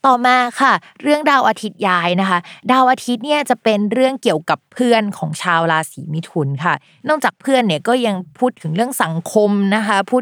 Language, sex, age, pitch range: Thai, female, 20-39, 170-225 Hz